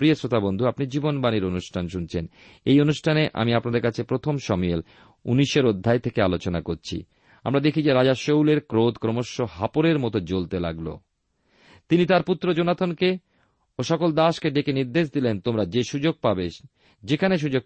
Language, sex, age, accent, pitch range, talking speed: Bengali, male, 40-59, native, 100-145 Hz, 155 wpm